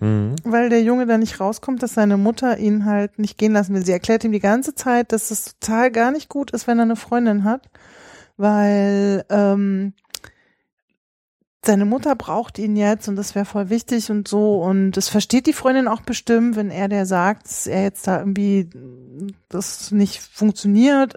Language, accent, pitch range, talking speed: German, German, 195-230 Hz, 190 wpm